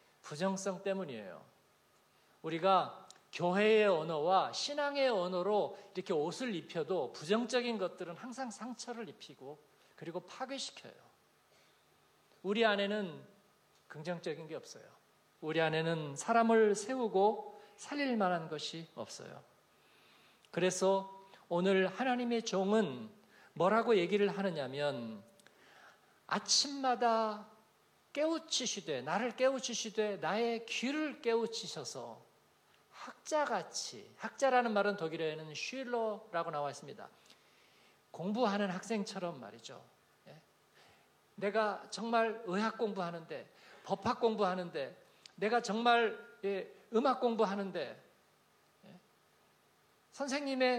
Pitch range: 190-245 Hz